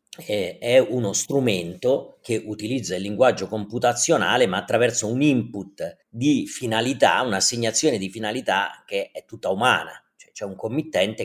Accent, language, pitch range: native, Italian, 105-155 Hz